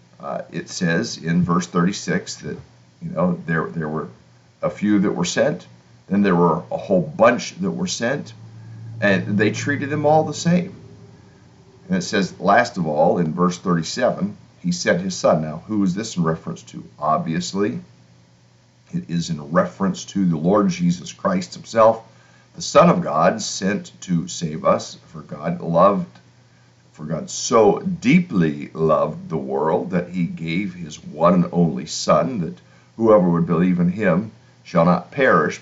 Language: English